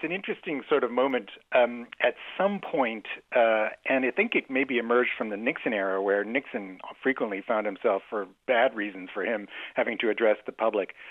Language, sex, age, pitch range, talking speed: English, male, 40-59, 110-135 Hz, 195 wpm